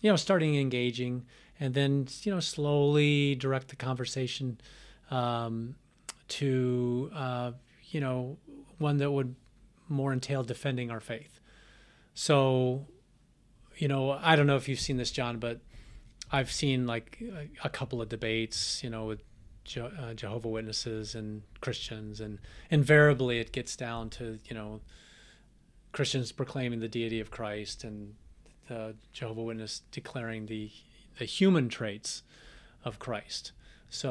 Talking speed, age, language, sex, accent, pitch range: 135 wpm, 30-49, English, male, American, 115-140 Hz